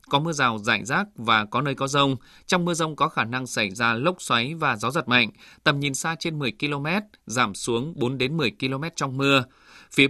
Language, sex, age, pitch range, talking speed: Vietnamese, male, 20-39, 125-155 Hz, 230 wpm